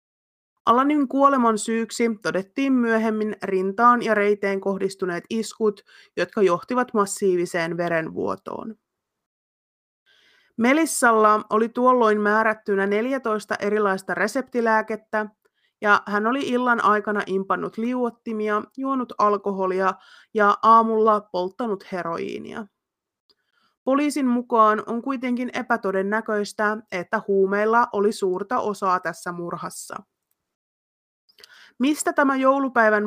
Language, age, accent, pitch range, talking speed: Finnish, 30-49, native, 195-245 Hz, 90 wpm